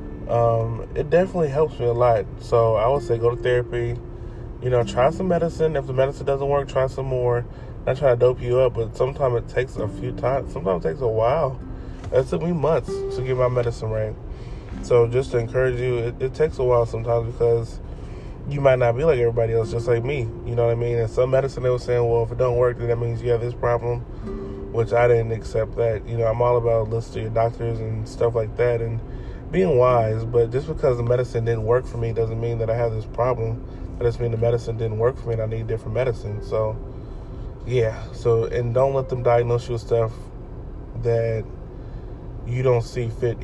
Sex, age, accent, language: male, 20-39, American, English